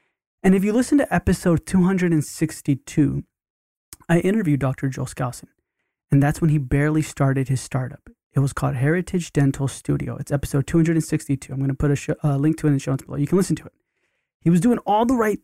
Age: 20-39